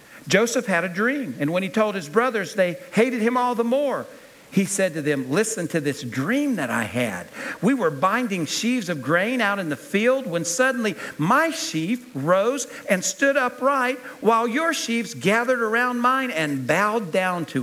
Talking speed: 185 wpm